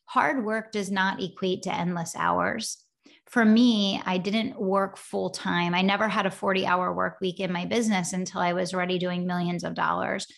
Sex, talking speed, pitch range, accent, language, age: female, 185 wpm, 180-220 Hz, American, English, 30-49